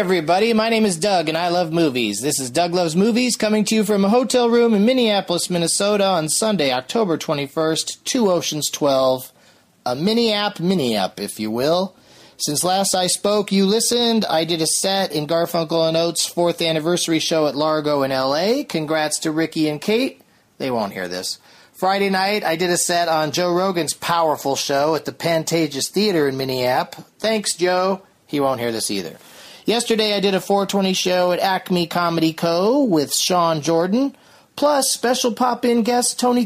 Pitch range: 150-205 Hz